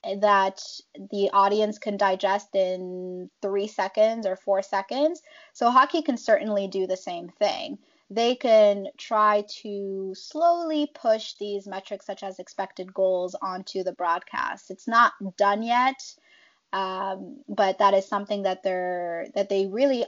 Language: English